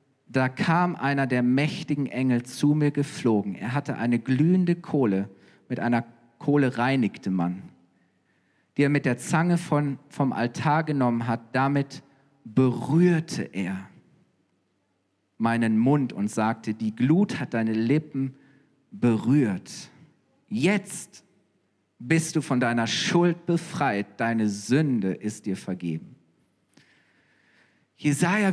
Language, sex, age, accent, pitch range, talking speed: German, male, 40-59, German, 115-175 Hz, 115 wpm